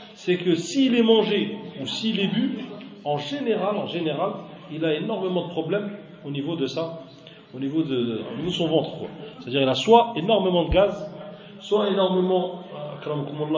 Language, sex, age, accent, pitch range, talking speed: French, male, 40-59, French, 140-190 Hz, 190 wpm